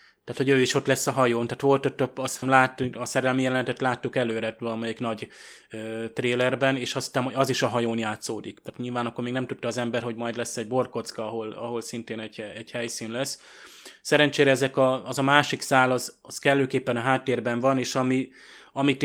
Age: 20-39